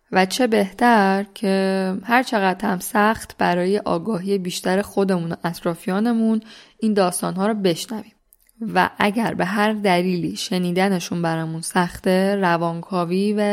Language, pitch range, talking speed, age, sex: Persian, 175-210 Hz, 125 wpm, 10-29, female